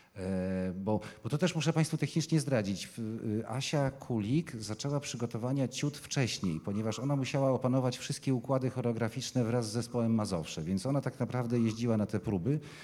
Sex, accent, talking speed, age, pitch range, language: male, native, 155 wpm, 40-59, 110-130 Hz, Polish